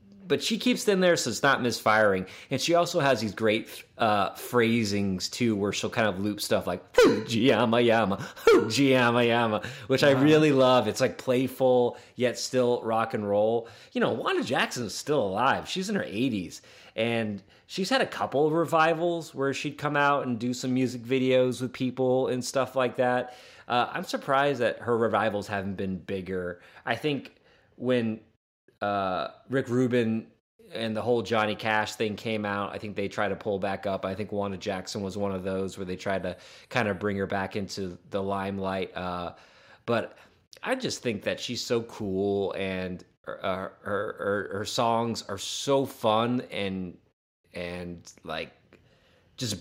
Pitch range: 100-130 Hz